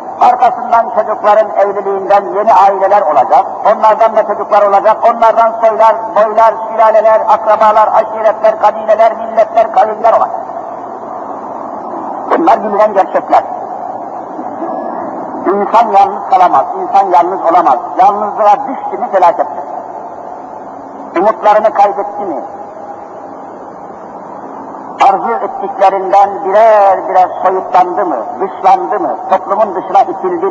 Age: 50-69